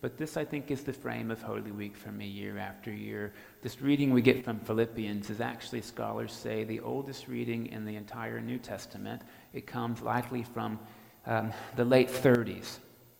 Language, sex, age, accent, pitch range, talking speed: English, male, 40-59, American, 105-125 Hz, 185 wpm